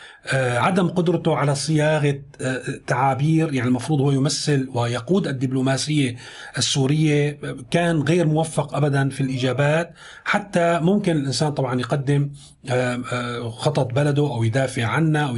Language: Arabic